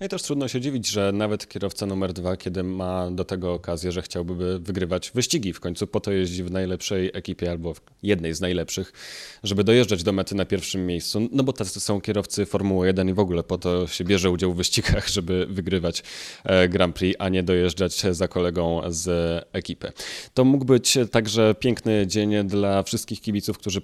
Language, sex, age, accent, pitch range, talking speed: Polish, male, 30-49, native, 90-105 Hz, 195 wpm